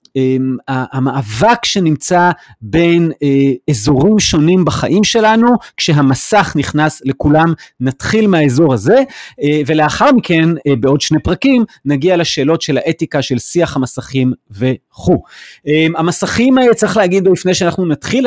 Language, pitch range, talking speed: Hebrew, 140-185 Hz, 105 wpm